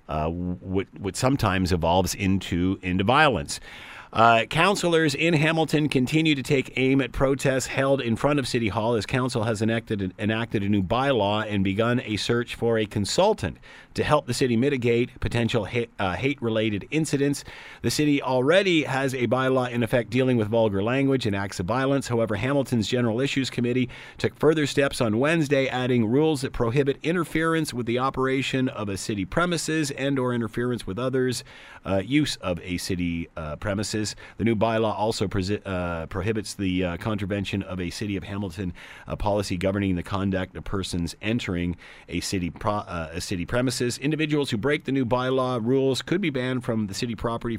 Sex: male